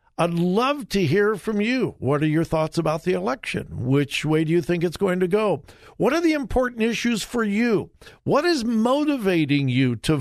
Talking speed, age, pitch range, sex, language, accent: 200 wpm, 60-79, 140-210 Hz, male, English, American